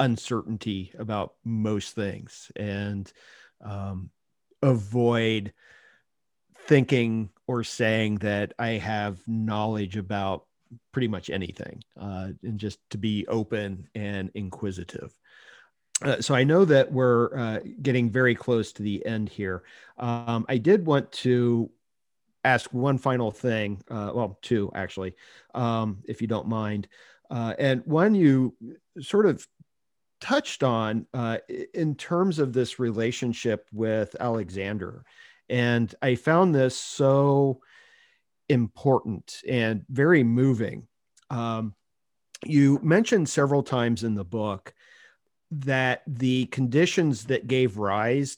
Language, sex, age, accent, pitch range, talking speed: English, male, 40-59, American, 105-130 Hz, 120 wpm